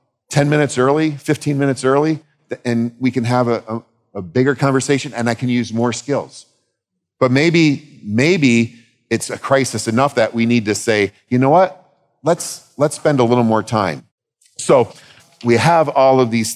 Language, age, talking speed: English, 40-59, 175 wpm